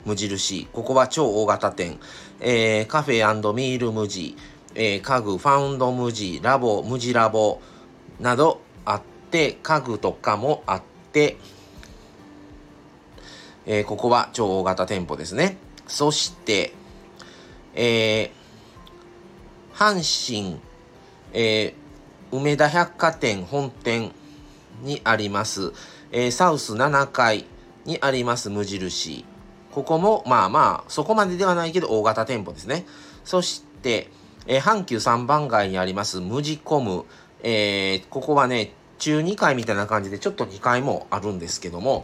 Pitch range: 105-150 Hz